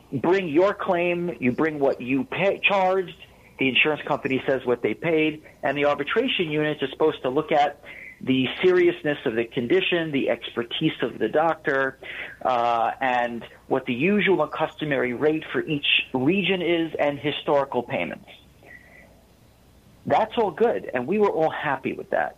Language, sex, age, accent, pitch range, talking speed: English, male, 40-59, American, 135-185 Hz, 160 wpm